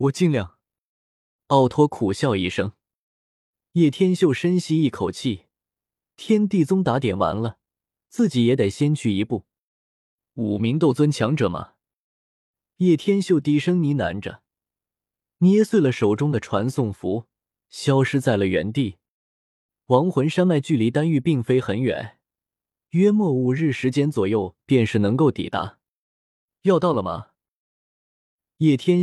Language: Chinese